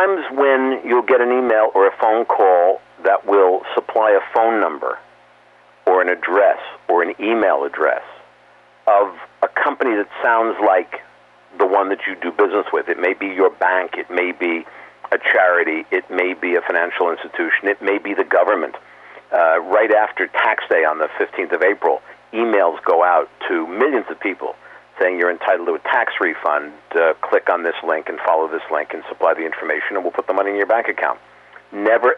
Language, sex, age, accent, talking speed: English, male, 50-69, American, 195 wpm